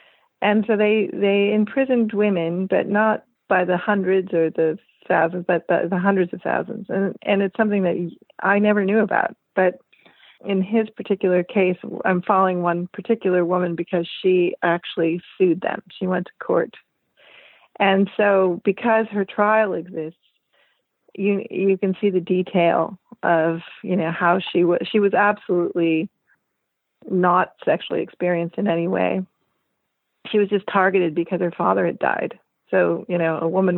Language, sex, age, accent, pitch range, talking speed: English, female, 40-59, American, 175-205 Hz, 160 wpm